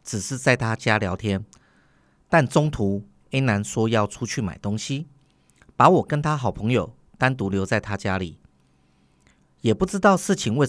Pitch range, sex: 95-120 Hz, male